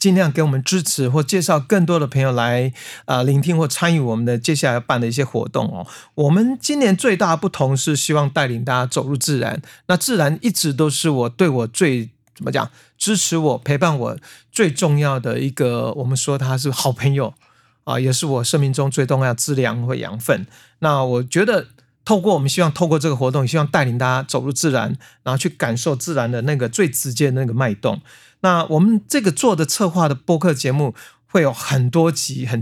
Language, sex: Chinese, male